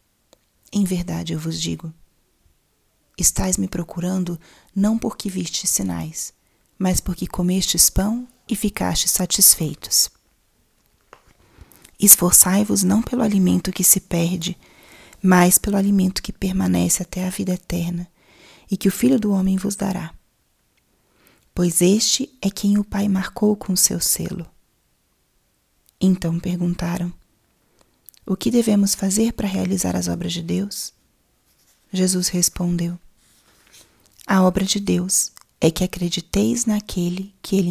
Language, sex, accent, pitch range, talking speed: Portuguese, female, Brazilian, 175-195 Hz, 125 wpm